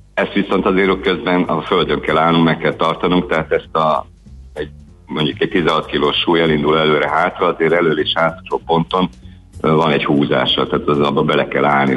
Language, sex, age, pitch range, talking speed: Hungarian, male, 60-79, 75-85 Hz, 180 wpm